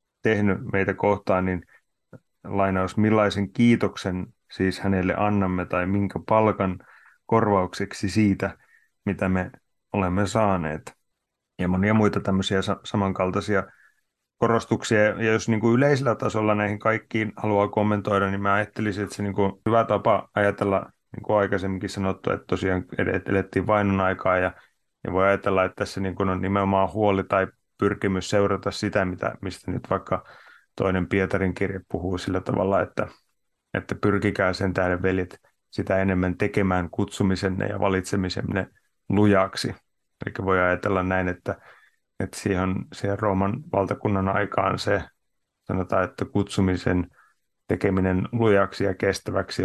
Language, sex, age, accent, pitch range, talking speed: Finnish, male, 30-49, native, 95-105 Hz, 135 wpm